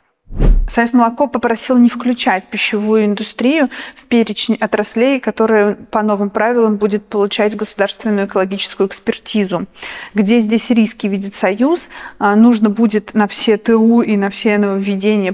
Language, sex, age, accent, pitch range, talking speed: Russian, female, 30-49, native, 195-225 Hz, 130 wpm